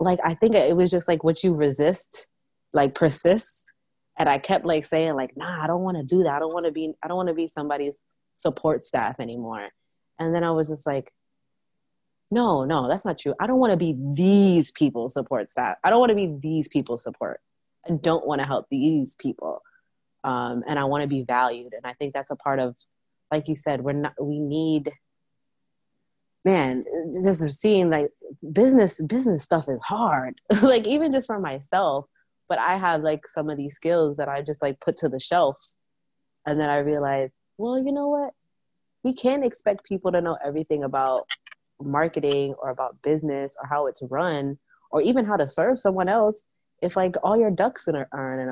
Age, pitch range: 20-39, 140-185 Hz